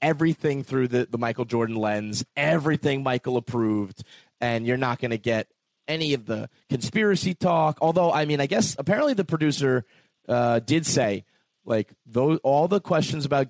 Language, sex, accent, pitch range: English, male, American, 120-155 Hz